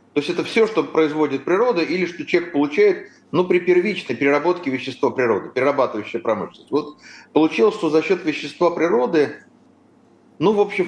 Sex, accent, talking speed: male, native, 160 wpm